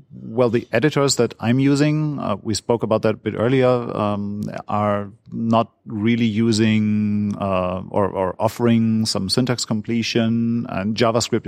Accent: German